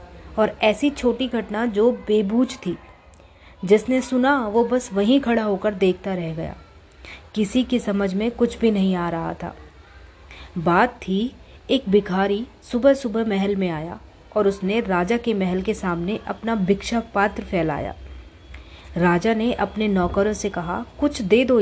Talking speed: 155 wpm